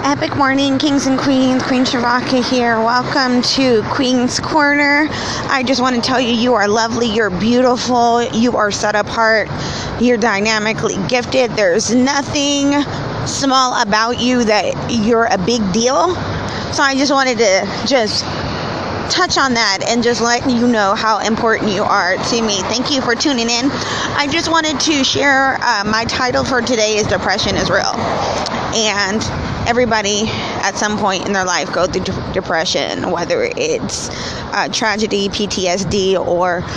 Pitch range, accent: 200-255 Hz, American